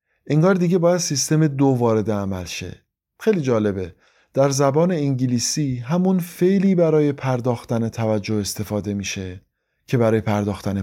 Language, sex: English, male